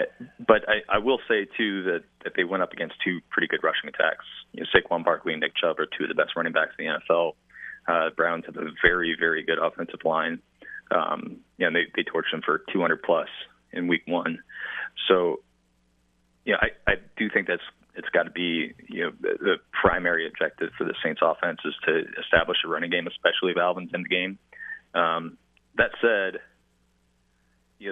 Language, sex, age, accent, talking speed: English, male, 30-49, American, 205 wpm